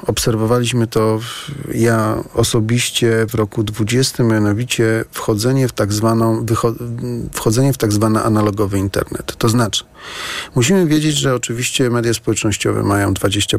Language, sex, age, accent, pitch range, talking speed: Polish, male, 40-59, native, 105-125 Hz, 125 wpm